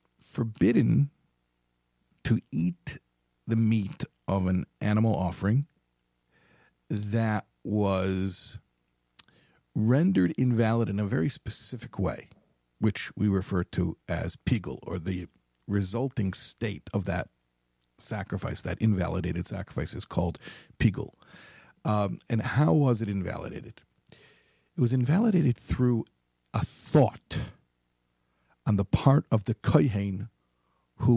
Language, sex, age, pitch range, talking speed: English, male, 50-69, 80-115 Hz, 110 wpm